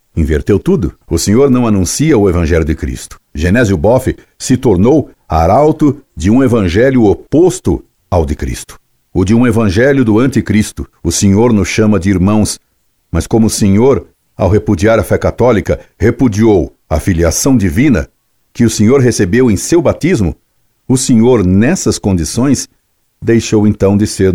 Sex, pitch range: male, 90-115 Hz